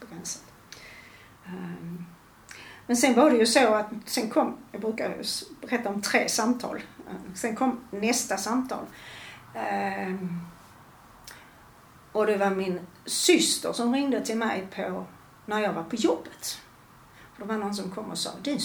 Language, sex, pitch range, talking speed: Swedish, female, 175-225 Hz, 140 wpm